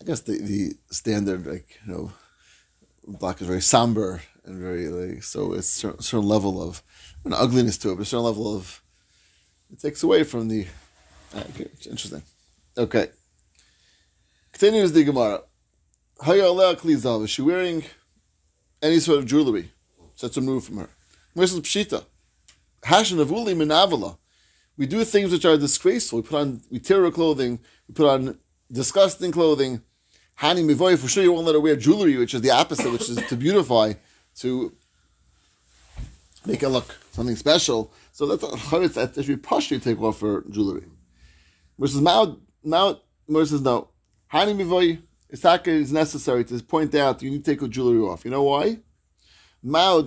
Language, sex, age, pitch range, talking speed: English, male, 30-49, 100-155 Hz, 155 wpm